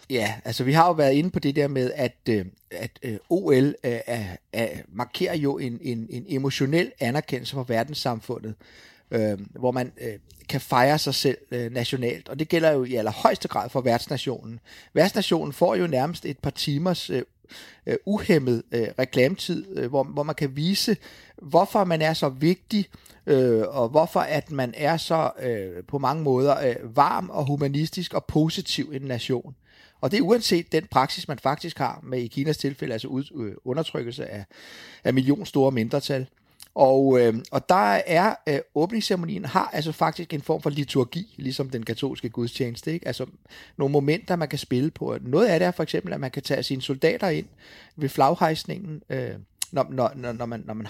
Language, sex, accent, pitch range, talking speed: English, male, Danish, 120-160 Hz, 165 wpm